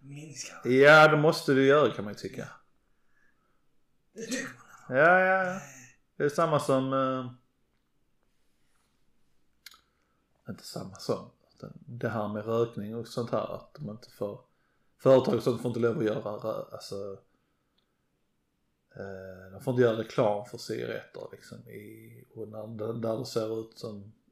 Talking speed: 145 wpm